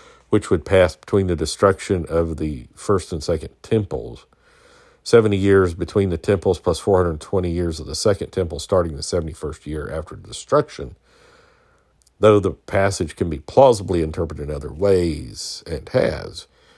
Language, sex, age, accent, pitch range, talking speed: English, male, 50-69, American, 80-105 Hz, 155 wpm